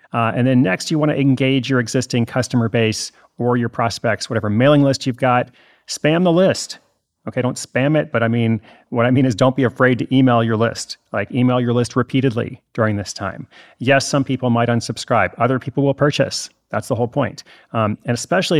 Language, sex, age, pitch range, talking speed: English, male, 30-49, 115-135 Hz, 210 wpm